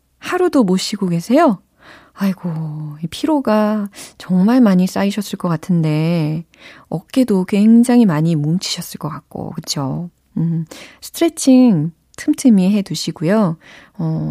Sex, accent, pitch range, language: female, native, 165-220 Hz, Korean